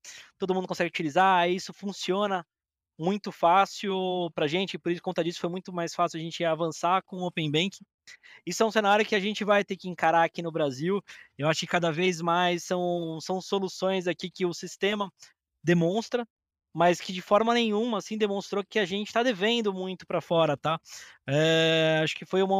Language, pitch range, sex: Portuguese, 165-195 Hz, male